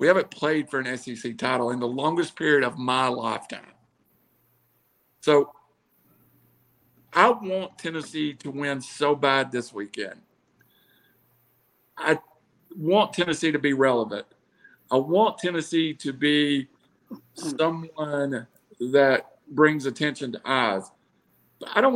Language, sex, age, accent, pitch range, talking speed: English, male, 50-69, American, 130-170 Hz, 120 wpm